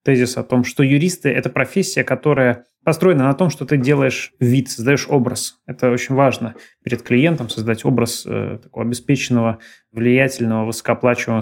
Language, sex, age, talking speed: Russian, male, 20-39, 145 wpm